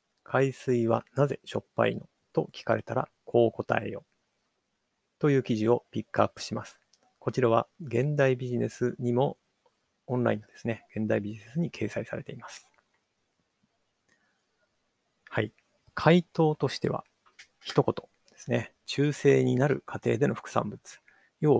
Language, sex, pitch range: Japanese, male, 115-135 Hz